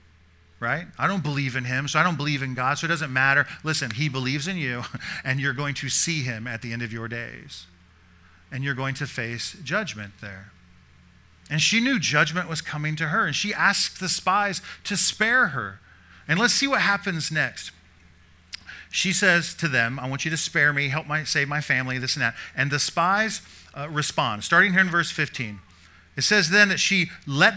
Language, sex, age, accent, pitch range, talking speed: English, male, 40-59, American, 120-175 Hz, 210 wpm